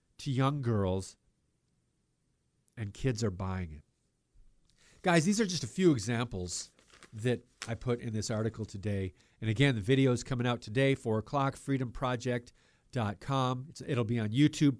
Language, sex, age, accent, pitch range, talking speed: English, male, 50-69, American, 110-140 Hz, 150 wpm